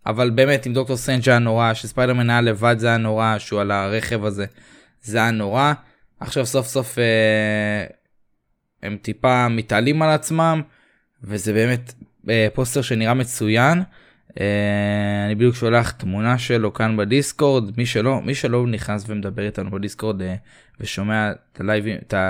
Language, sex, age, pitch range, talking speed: Hebrew, male, 20-39, 105-135 Hz, 145 wpm